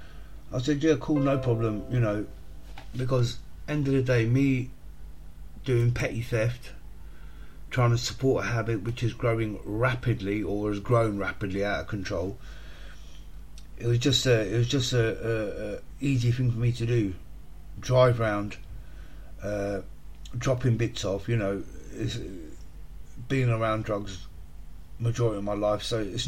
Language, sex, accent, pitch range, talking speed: English, male, British, 95-120 Hz, 155 wpm